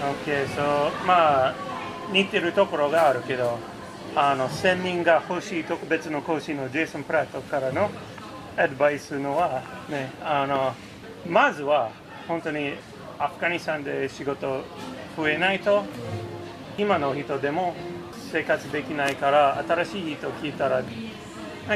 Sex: male